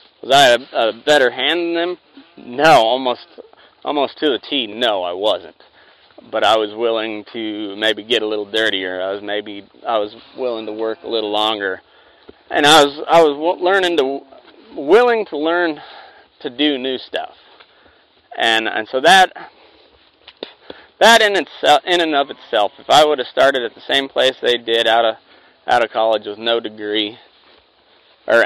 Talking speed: 175 wpm